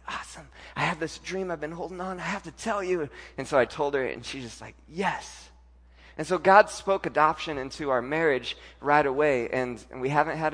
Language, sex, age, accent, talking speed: English, male, 20-39, American, 220 wpm